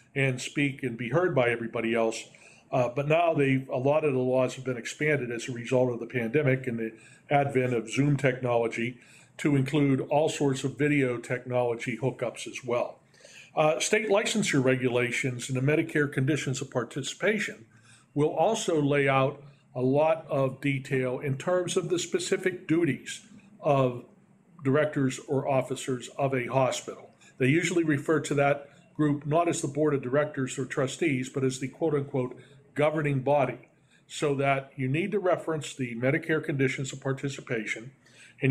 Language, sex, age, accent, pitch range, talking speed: English, male, 40-59, American, 130-150 Hz, 165 wpm